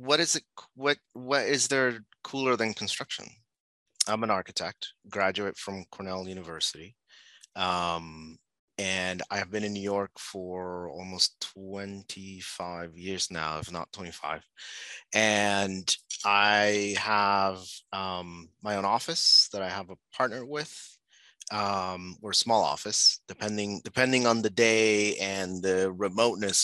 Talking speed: 130 wpm